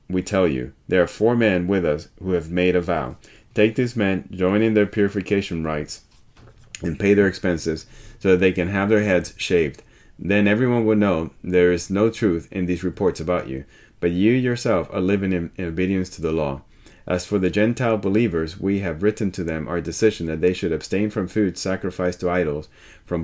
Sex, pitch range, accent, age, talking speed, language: male, 85-105 Hz, American, 30-49, 205 wpm, English